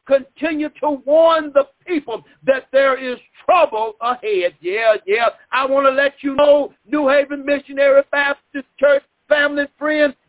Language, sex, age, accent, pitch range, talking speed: English, male, 50-69, American, 260-295 Hz, 145 wpm